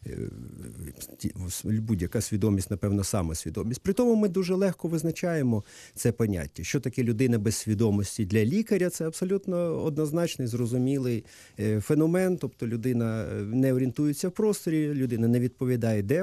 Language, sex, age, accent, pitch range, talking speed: Ukrainian, male, 40-59, native, 105-150 Hz, 125 wpm